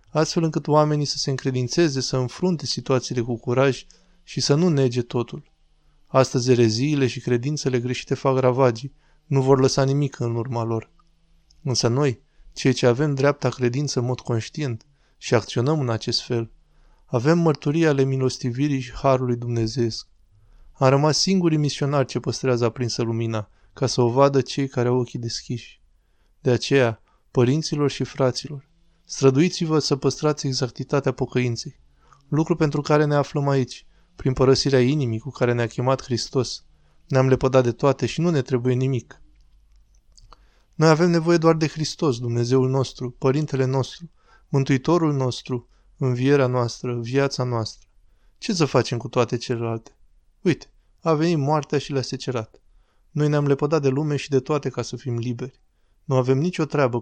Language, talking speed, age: Romanian, 155 wpm, 20-39